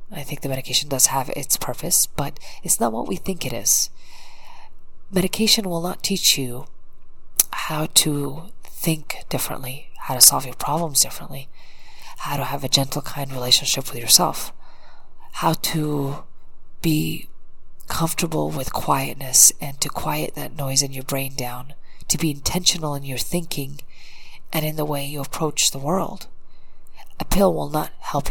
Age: 30-49